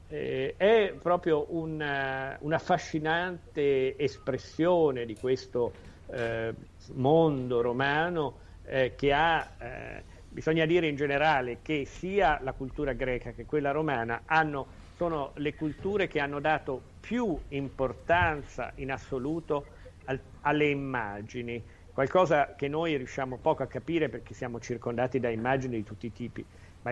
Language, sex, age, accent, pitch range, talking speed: Italian, male, 50-69, native, 120-155 Hz, 130 wpm